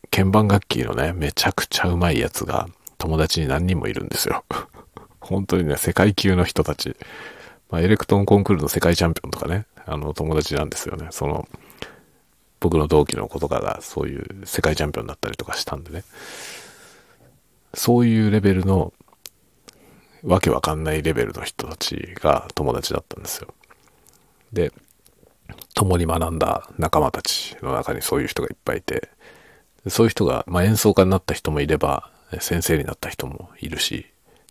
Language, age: Japanese, 40-59